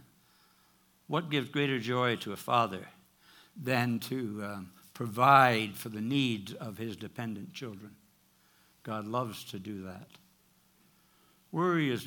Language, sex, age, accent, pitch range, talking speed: English, male, 60-79, American, 105-145 Hz, 125 wpm